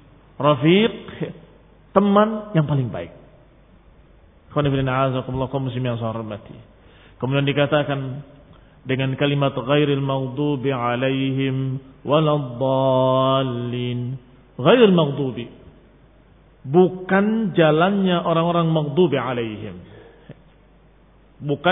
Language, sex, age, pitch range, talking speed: Indonesian, male, 40-59, 135-205 Hz, 55 wpm